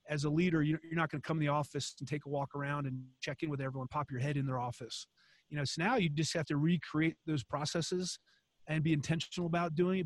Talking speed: 260 wpm